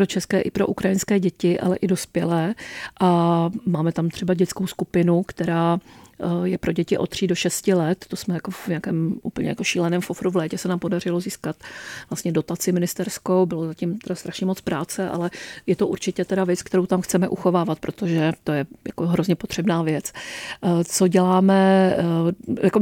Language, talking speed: Czech, 175 wpm